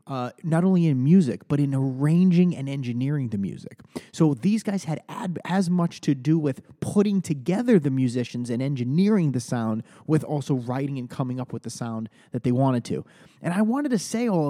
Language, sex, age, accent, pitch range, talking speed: English, male, 30-49, American, 135-175 Hz, 200 wpm